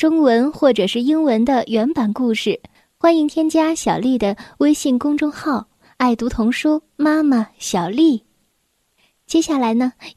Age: 10-29